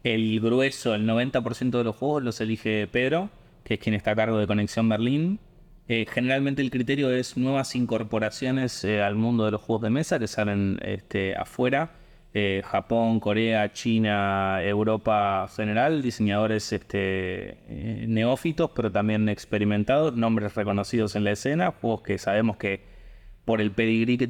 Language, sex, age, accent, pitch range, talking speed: Spanish, male, 20-39, Argentinian, 105-120 Hz, 160 wpm